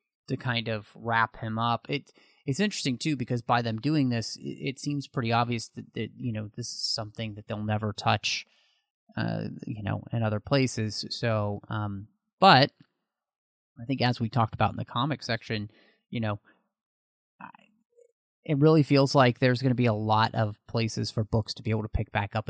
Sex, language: male, English